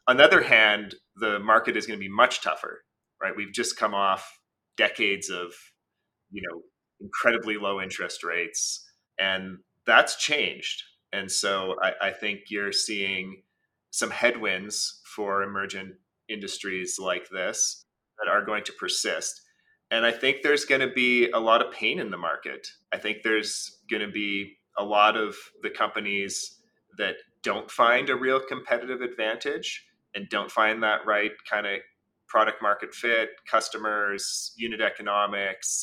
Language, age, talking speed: English, 30-49, 155 wpm